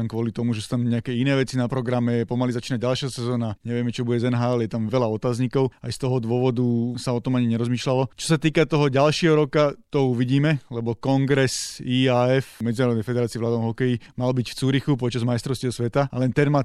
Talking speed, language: 210 wpm, Slovak